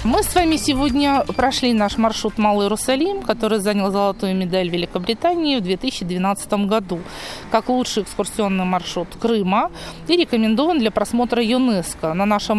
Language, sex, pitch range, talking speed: Russian, female, 195-240 Hz, 140 wpm